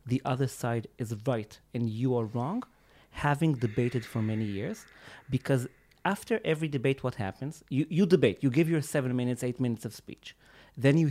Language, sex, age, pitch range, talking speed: English, male, 40-59, 120-155 Hz, 185 wpm